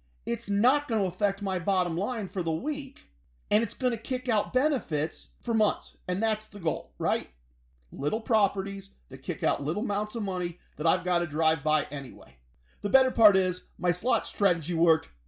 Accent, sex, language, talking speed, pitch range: American, male, English, 195 wpm, 165-220 Hz